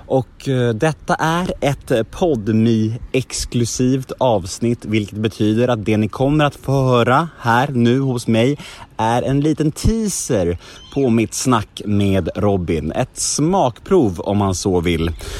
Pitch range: 100-145 Hz